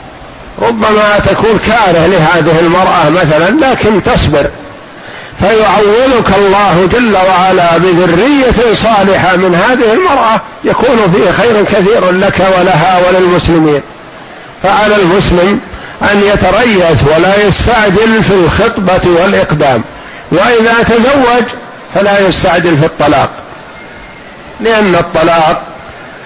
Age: 60-79